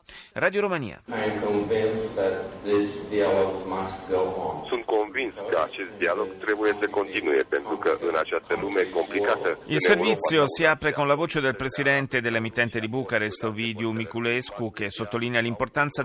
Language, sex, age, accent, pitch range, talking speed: Italian, male, 30-49, native, 105-135 Hz, 70 wpm